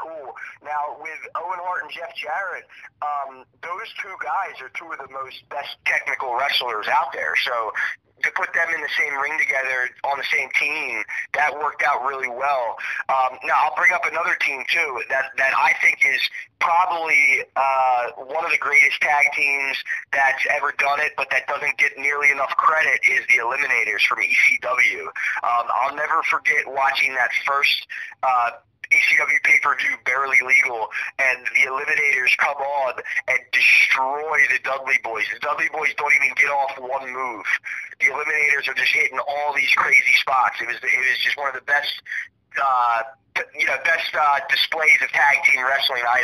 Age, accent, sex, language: 20-39, American, male, English